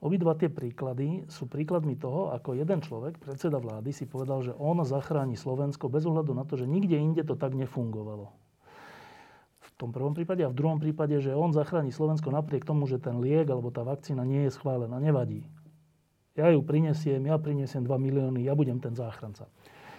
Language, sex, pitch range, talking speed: Slovak, male, 130-160 Hz, 185 wpm